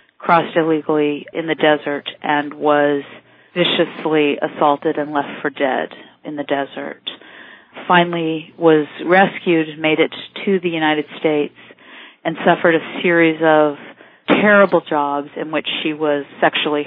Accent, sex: American, female